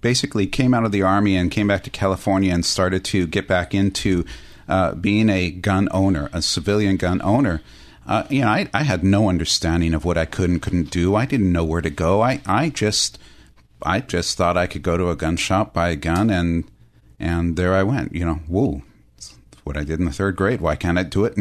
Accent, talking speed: American, 235 wpm